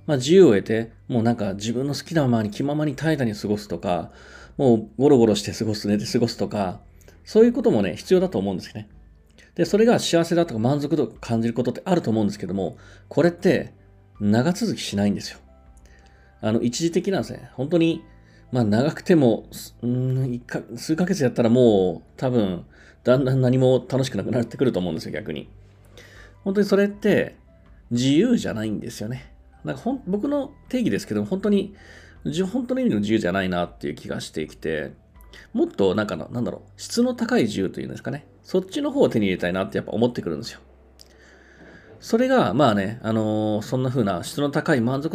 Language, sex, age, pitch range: Japanese, male, 40-59, 100-165 Hz